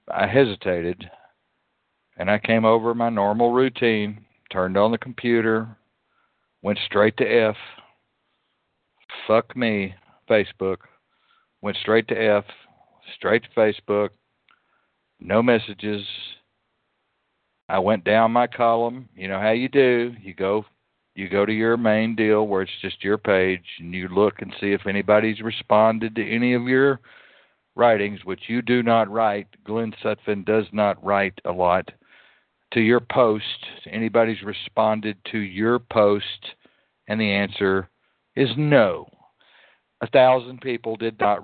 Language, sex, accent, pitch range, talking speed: English, male, American, 100-115 Hz, 140 wpm